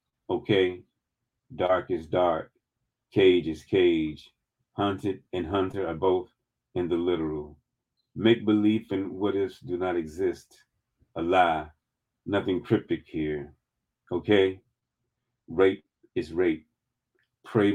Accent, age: American, 40-59